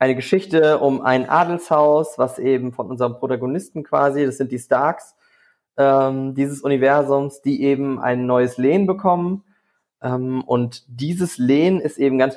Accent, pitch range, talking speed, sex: German, 125-150 Hz, 150 wpm, male